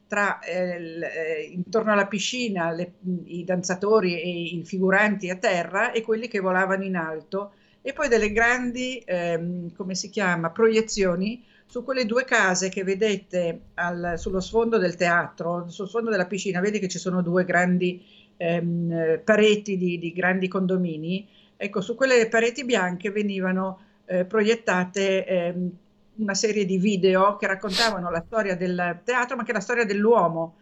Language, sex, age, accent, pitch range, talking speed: Italian, female, 50-69, native, 180-220 Hz, 155 wpm